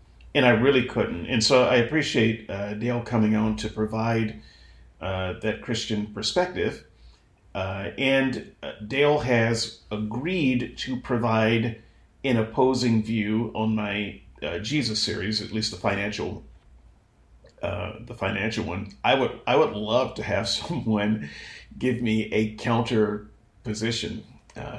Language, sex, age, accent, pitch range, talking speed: English, male, 40-59, American, 105-125 Hz, 135 wpm